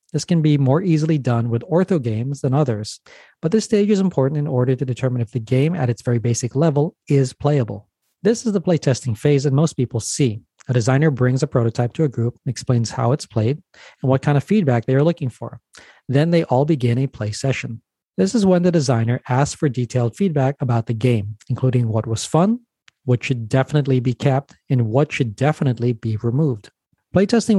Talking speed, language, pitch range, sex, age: 205 wpm, English, 120-150 Hz, male, 40-59